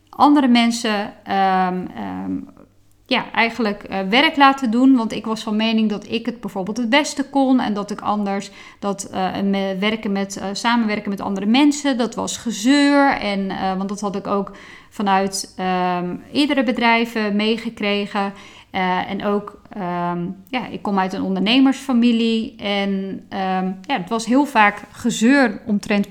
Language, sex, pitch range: Dutch, female, 195-240 Hz